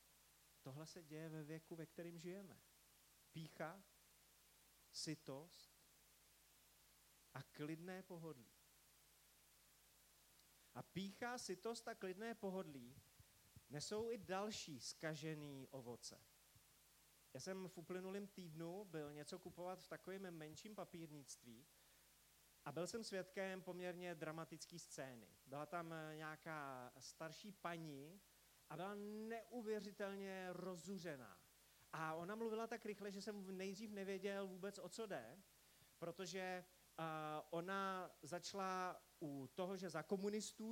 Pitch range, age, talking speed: 155-195 Hz, 30-49, 110 wpm